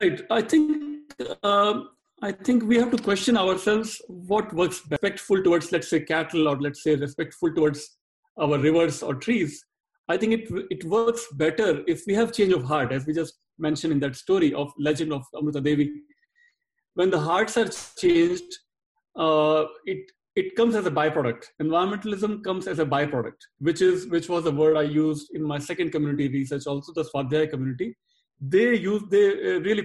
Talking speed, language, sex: 180 wpm, English, male